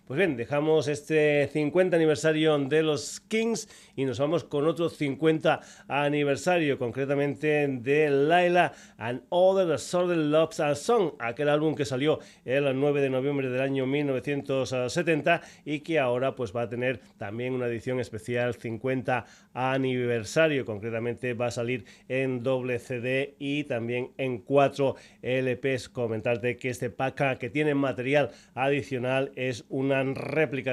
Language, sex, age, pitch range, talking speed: Spanish, male, 30-49, 120-145 Hz, 140 wpm